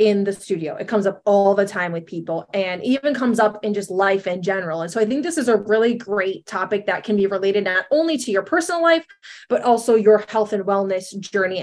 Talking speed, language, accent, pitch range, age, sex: 240 wpm, English, American, 195-250 Hz, 20-39, female